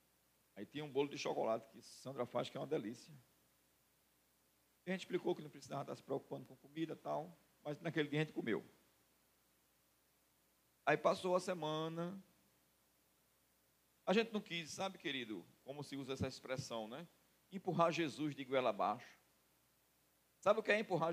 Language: Portuguese